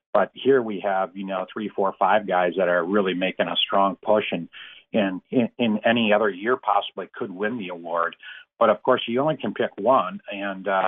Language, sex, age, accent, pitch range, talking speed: English, male, 40-59, American, 95-105 Hz, 210 wpm